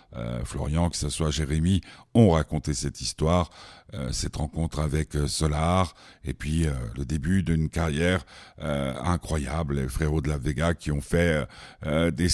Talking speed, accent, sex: 165 wpm, French, male